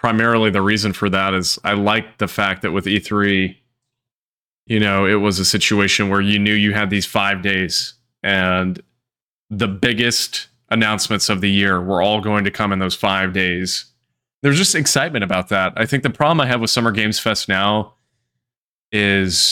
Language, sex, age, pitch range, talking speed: English, male, 20-39, 100-115 Hz, 185 wpm